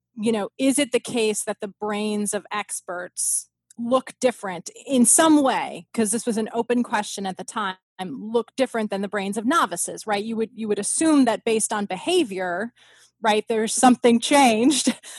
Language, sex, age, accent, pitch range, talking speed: English, female, 20-39, American, 205-245 Hz, 180 wpm